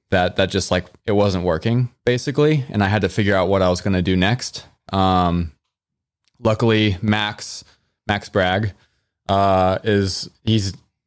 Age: 20-39